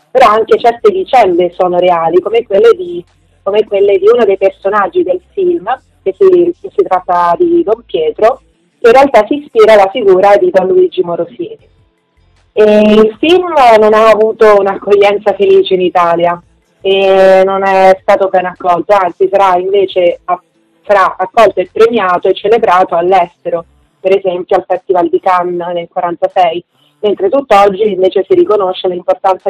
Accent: native